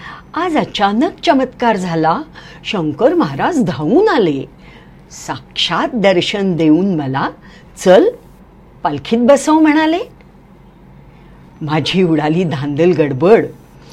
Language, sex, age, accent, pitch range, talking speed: English, female, 50-69, Indian, 160-265 Hz, 85 wpm